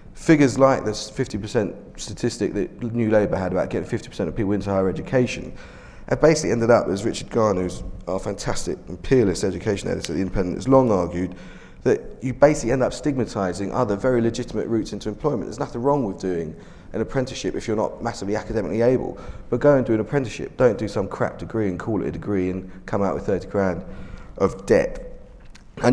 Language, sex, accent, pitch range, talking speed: English, male, British, 95-120 Hz, 195 wpm